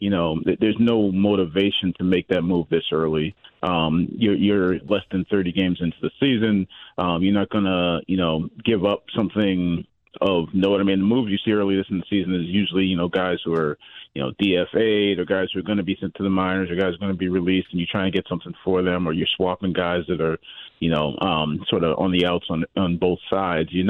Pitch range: 85-100 Hz